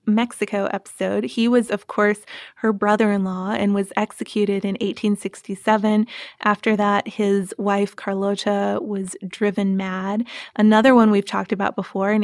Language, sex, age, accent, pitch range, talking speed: English, female, 20-39, American, 195-220 Hz, 135 wpm